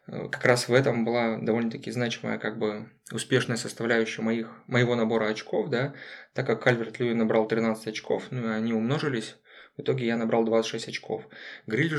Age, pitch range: 20-39, 115-130 Hz